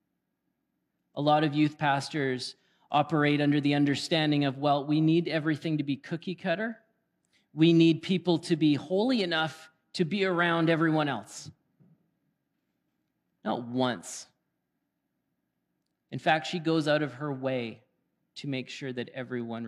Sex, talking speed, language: male, 135 wpm, English